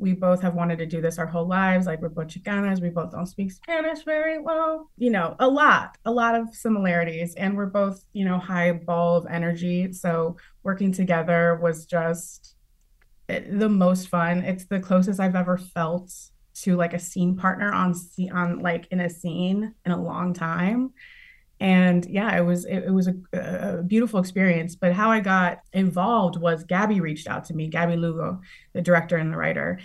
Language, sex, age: English, female, 20-39